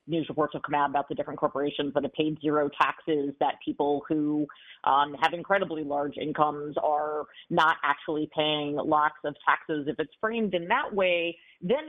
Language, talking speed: English, 180 wpm